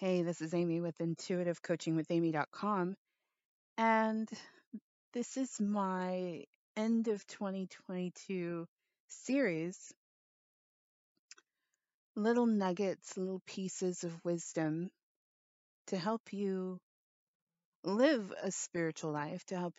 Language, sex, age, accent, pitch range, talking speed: English, female, 30-49, American, 170-215 Hz, 90 wpm